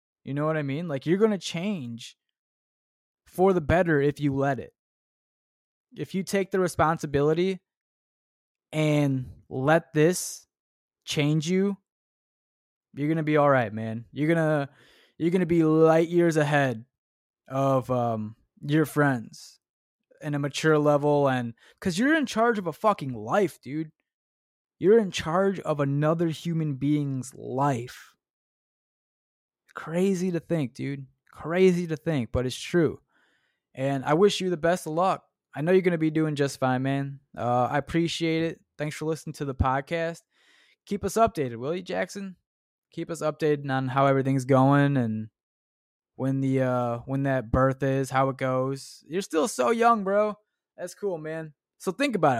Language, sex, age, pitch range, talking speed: English, male, 20-39, 135-180 Hz, 160 wpm